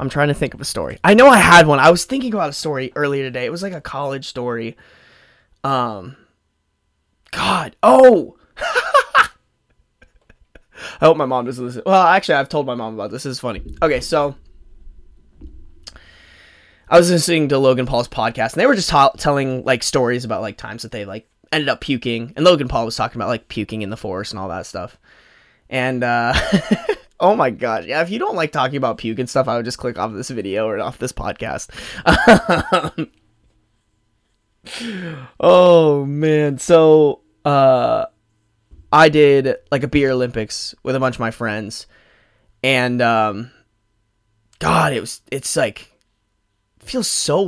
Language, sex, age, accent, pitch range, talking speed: English, male, 20-39, American, 110-145 Hz, 175 wpm